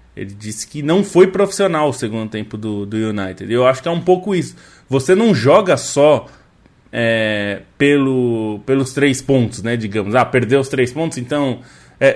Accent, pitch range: Brazilian, 115-160 Hz